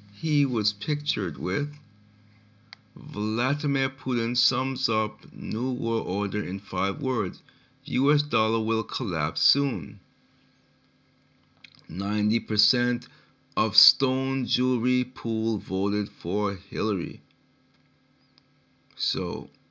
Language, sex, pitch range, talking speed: English, male, 105-135 Hz, 85 wpm